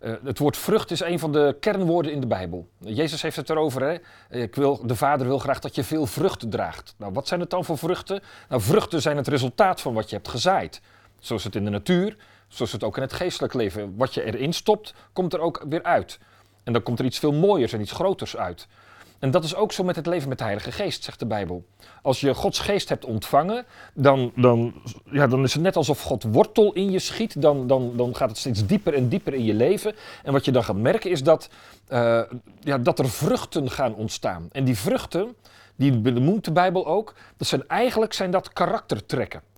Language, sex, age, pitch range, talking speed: Dutch, male, 40-59, 120-175 Hz, 230 wpm